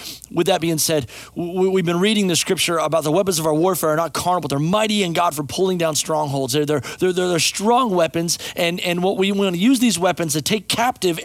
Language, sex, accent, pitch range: English, male, American, 150-195 Hz